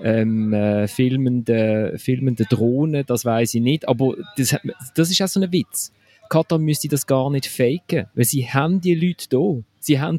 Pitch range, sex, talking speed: 125-160 Hz, male, 190 wpm